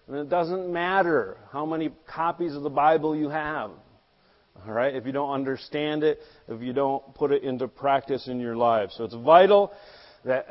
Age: 40-59